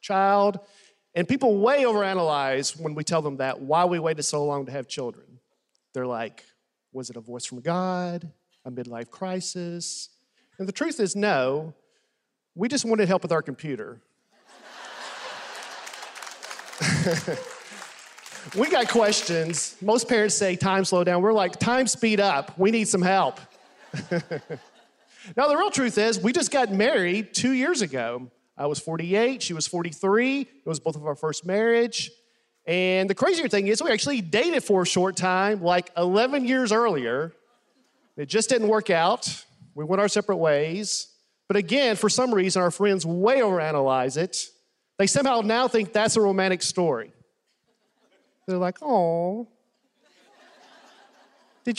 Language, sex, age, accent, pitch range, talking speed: English, male, 40-59, American, 165-225 Hz, 155 wpm